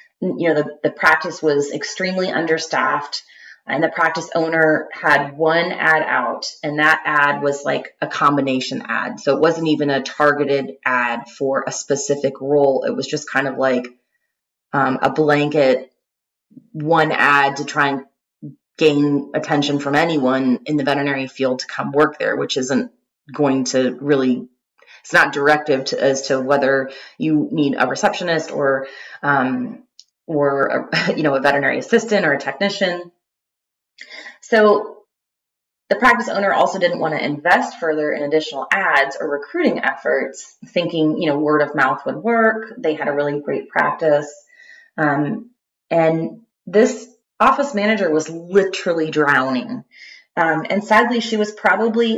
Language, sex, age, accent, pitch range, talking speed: English, female, 20-39, American, 145-200 Hz, 150 wpm